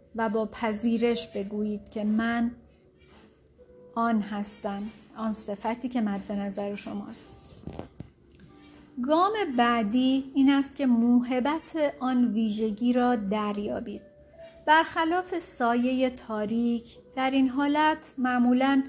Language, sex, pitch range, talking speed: Persian, female, 225-260 Hz, 100 wpm